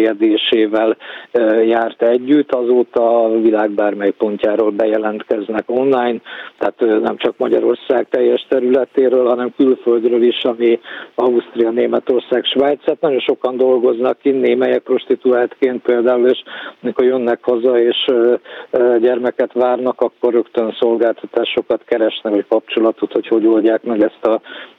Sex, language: male, Hungarian